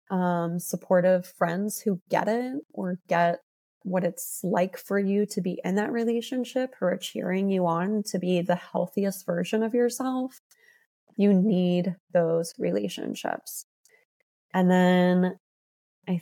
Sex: female